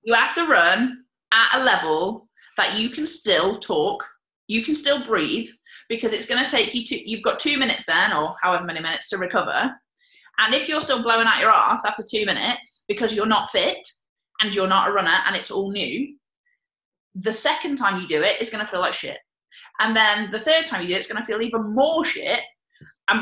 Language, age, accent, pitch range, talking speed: English, 20-39, British, 215-305 Hz, 220 wpm